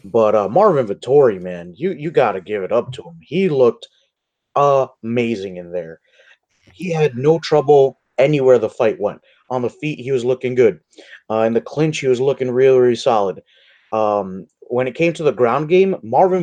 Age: 30-49